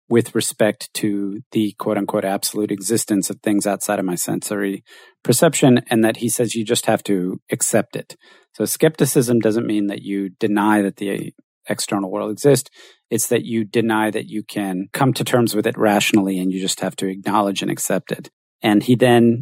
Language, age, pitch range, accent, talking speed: English, 40-59, 105-125 Hz, American, 190 wpm